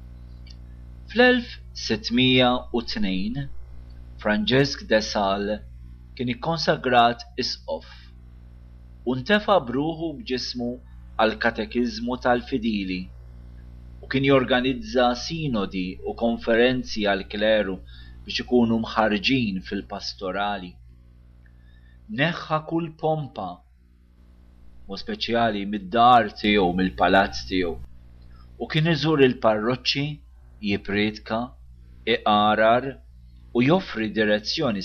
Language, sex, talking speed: English, male, 70 wpm